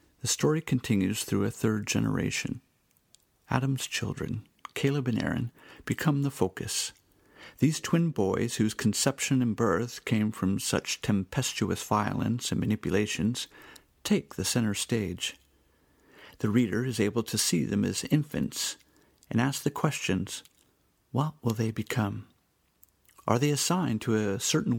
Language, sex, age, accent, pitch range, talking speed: English, male, 50-69, American, 105-135 Hz, 135 wpm